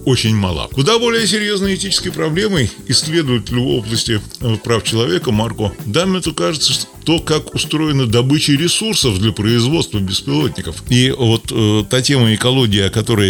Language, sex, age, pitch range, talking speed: Russian, male, 20-39, 110-150 Hz, 145 wpm